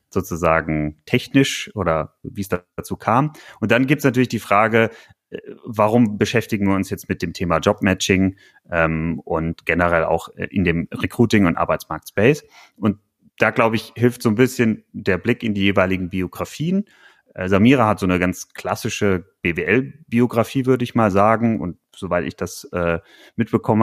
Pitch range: 95-115 Hz